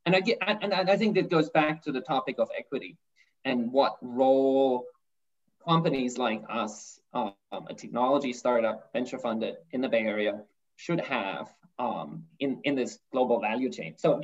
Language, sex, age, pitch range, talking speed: English, male, 20-39, 130-170 Hz, 175 wpm